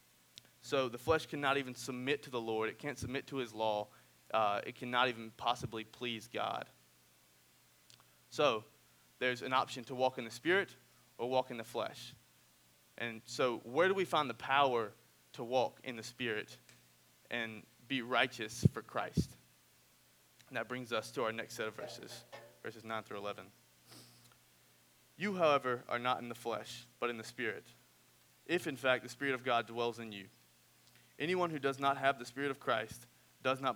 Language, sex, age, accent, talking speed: English, male, 20-39, American, 180 wpm